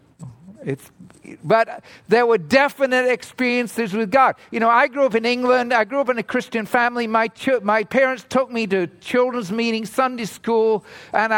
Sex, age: male, 50-69